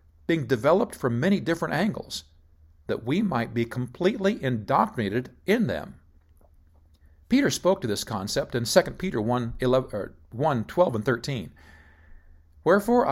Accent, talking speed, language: American, 135 wpm, English